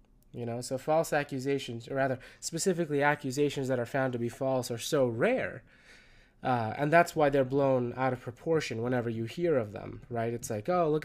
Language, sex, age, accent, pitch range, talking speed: English, male, 20-39, American, 120-140 Hz, 200 wpm